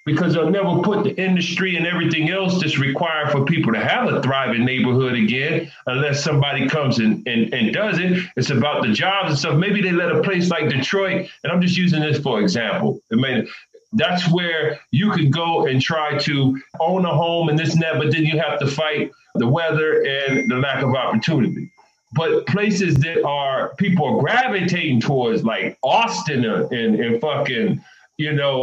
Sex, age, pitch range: male, 40-59, 150-205 Hz